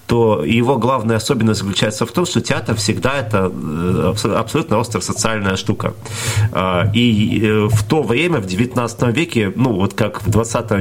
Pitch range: 105-130 Hz